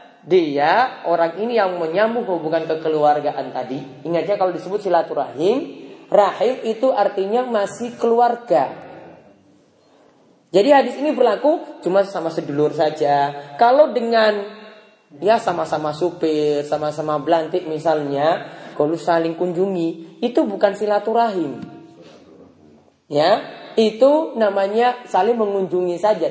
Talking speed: 110 wpm